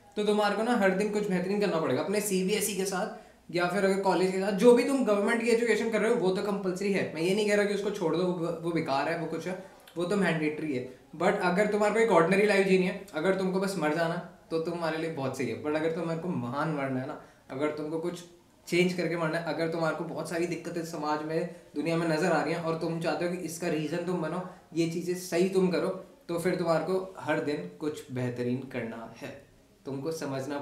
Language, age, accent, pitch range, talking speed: Hindi, 20-39, native, 160-195 Hz, 245 wpm